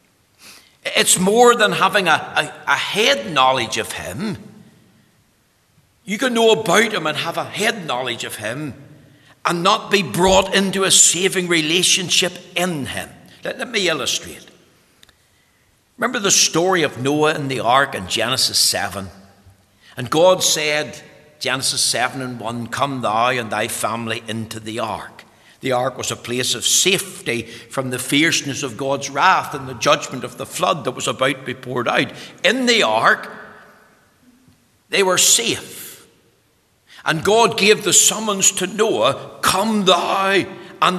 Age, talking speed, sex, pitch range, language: 60-79, 150 wpm, male, 130-195 Hz, English